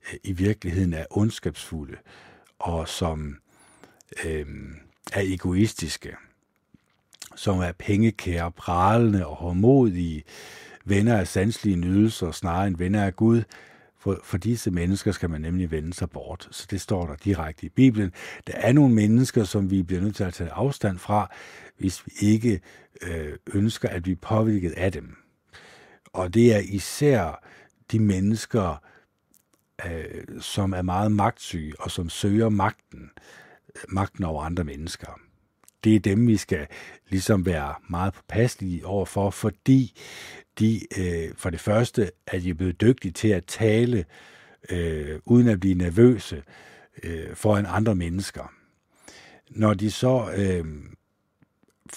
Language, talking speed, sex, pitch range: Danish, 135 wpm, male, 90-110 Hz